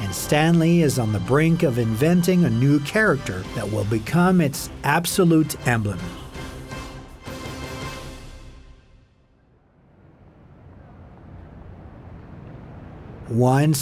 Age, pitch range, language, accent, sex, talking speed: 50-69, 115-165 Hz, English, American, male, 80 wpm